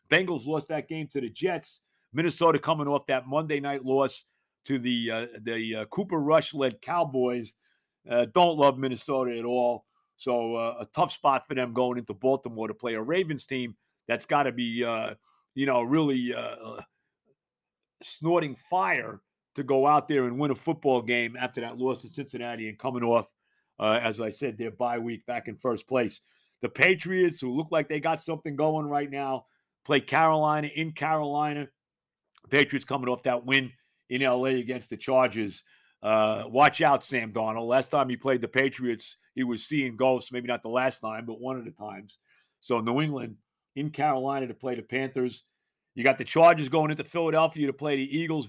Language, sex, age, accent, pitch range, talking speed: English, male, 50-69, American, 120-150 Hz, 185 wpm